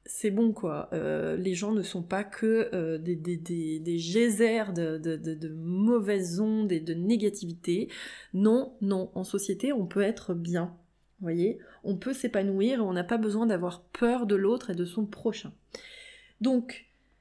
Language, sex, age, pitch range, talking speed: French, female, 20-39, 185-235 Hz, 180 wpm